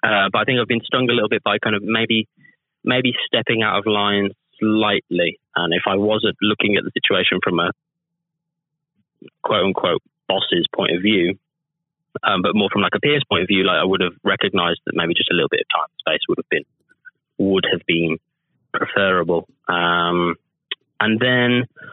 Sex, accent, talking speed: male, British, 195 wpm